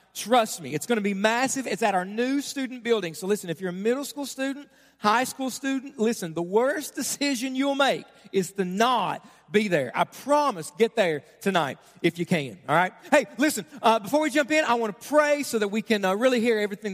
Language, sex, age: English, male, 40-59